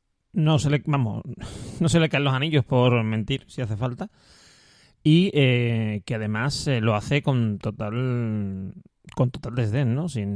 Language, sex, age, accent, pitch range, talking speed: Spanish, male, 30-49, Spanish, 120-150 Hz, 160 wpm